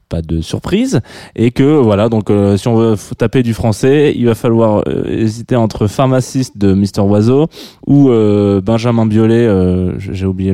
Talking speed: 190 wpm